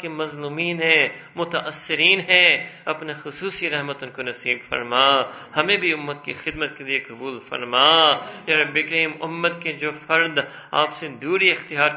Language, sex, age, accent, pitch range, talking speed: English, male, 50-69, Indian, 135-175 Hz, 155 wpm